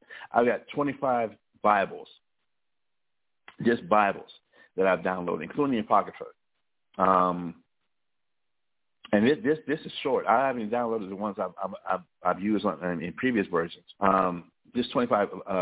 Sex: male